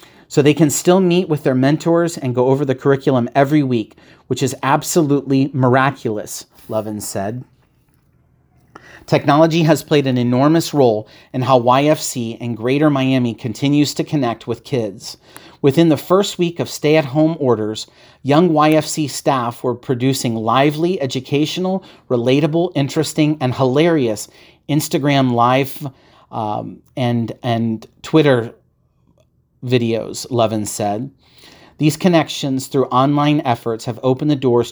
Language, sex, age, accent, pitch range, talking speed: English, male, 40-59, American, 120-155 Hz, 130 wpm